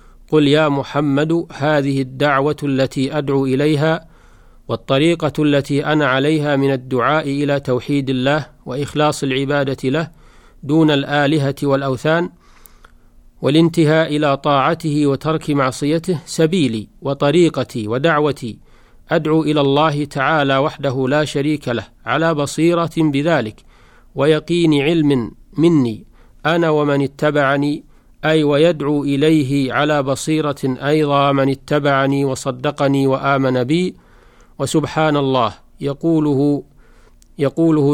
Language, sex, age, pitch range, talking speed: Arabic, male, 40-59, 135-155 Hz, 100 wpm